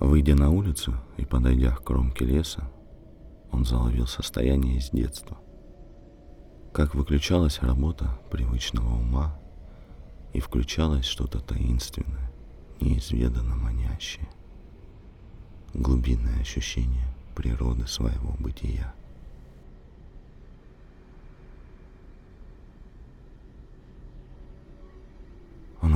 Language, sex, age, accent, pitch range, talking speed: Russian, male, 40-59, native, 65-90 Hz, 70 wpm